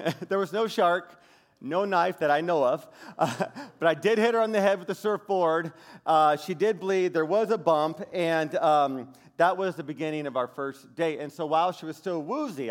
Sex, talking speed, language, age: male, 220 wpm, English, 40-59